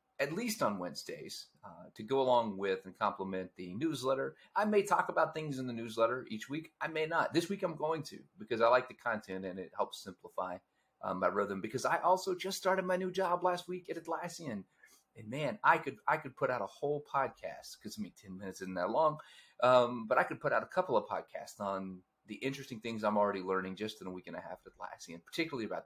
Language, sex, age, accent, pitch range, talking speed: English, male, 30-49, American, 105-160 Hz, 235 wpm